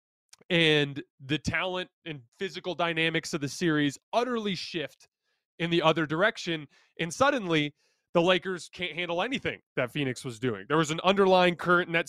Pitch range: 145-175 Hz